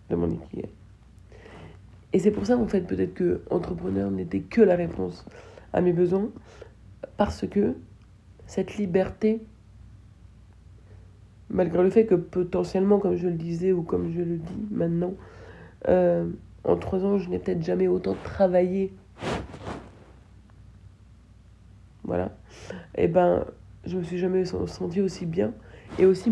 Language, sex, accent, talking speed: French, female, French, 135 wpm